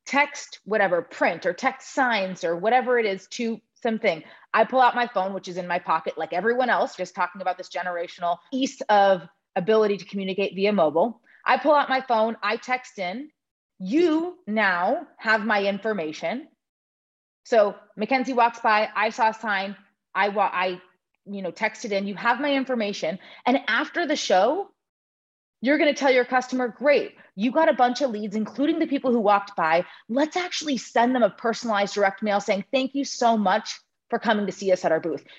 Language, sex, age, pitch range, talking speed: English, female, 30-49, 190-255 Hz, 190 wpm